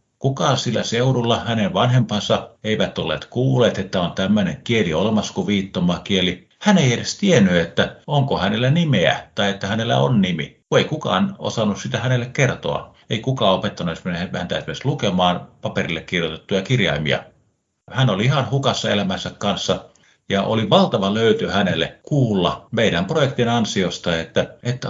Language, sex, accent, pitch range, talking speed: Finnish, male, native, 100-135 Hz, 145 wpm